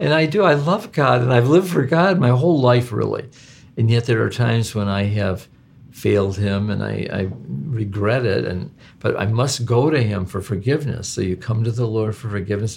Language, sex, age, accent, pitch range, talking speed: English, male, 50-69, American, 105-130 Hz, 220 wpm